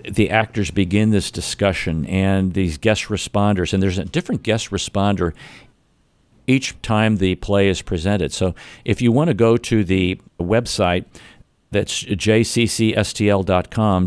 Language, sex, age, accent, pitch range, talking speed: English, male, 50-69, American, 95-110 Hz, 135 wpm